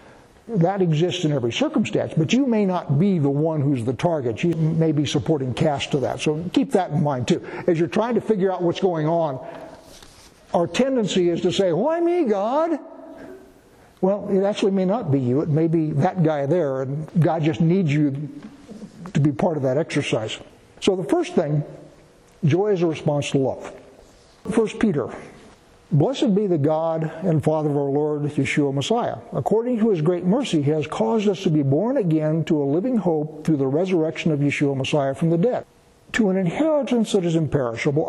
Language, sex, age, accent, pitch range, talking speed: English, male, 60-79, American, 150-200 Hz, 195 wpm